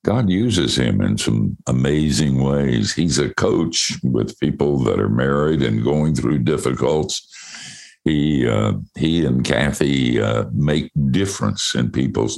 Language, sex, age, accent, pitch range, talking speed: English, male, 60-79, American, 70-90 Hz, 135 wpm